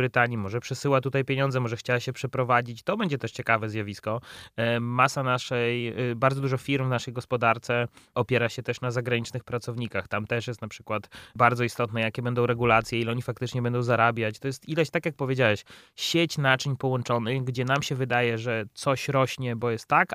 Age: 20-39